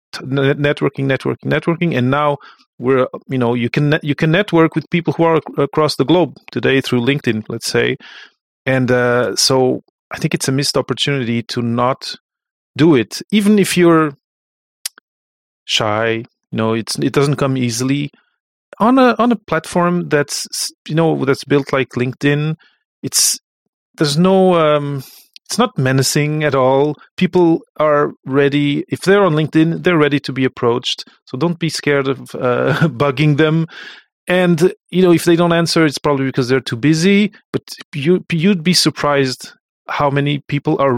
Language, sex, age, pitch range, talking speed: English, male, 30-49, 135-170 Hz, 165 wpm